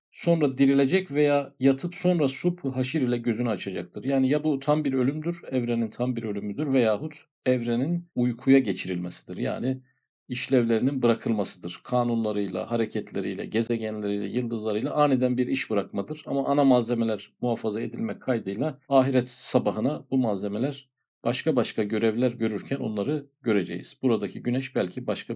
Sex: male